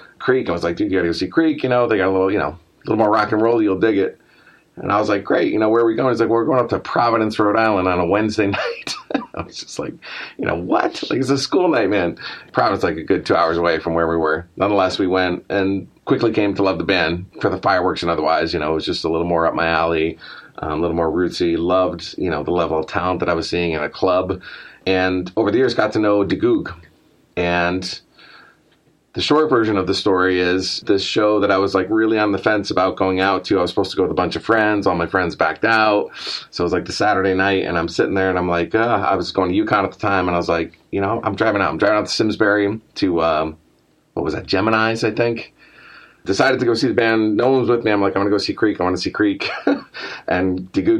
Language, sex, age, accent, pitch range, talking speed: English, male, 30-49, American, 90-115 Hz, 275 wpm